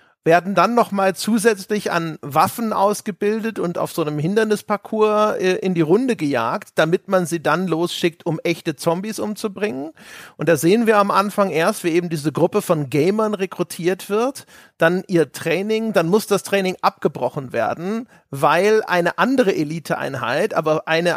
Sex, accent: male, German